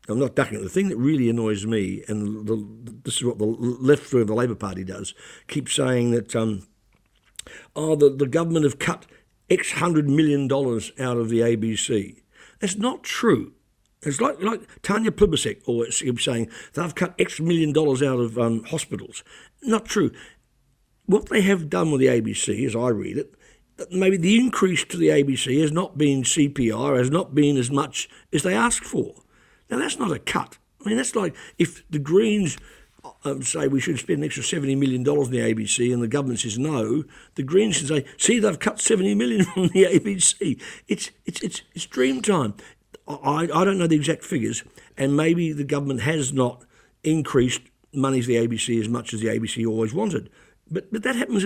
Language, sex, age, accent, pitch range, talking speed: English, male, 60-79, British, 120-175 Hz, 200 wpm